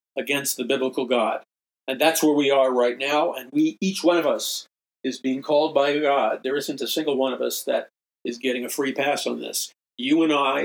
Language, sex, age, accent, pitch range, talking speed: English, male, 50-69, American, 125-155 Hz, 225 wpm